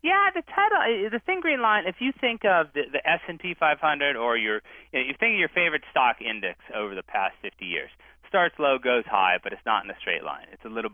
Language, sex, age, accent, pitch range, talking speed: English, male, 30-49, American, 130-190 Hz, 245 wpm